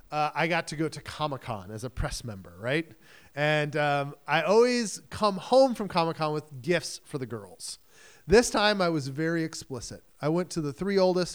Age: 30-49